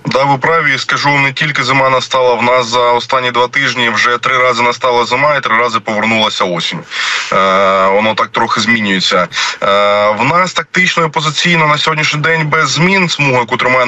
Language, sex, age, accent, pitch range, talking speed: Ukrainian, male, 20-39, native, 115-135 Hz, 175 wpm